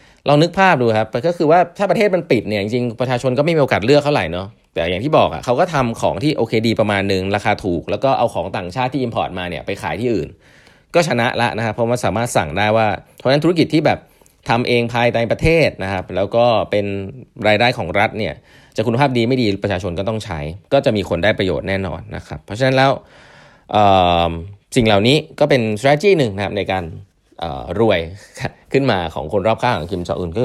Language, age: English, 20-39